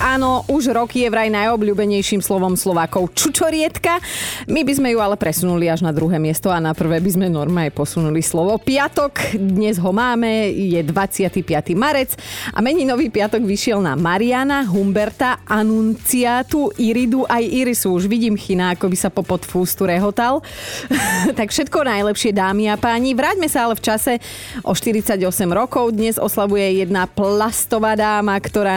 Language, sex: Slovak, female